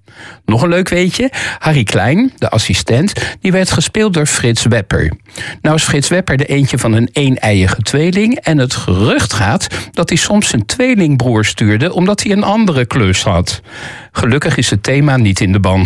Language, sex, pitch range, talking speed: Dutch, male, 105-160 Hz, 180 wpm